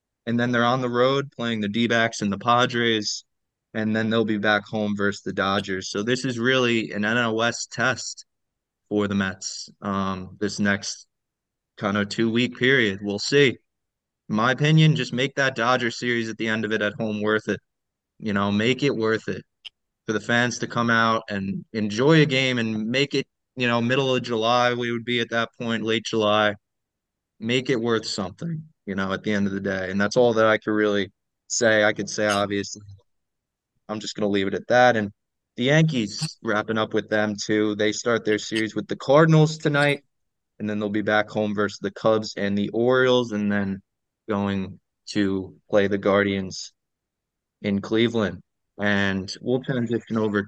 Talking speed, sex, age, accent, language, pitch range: 195 wpm, male, 20-39, American, English, 100-120 Hz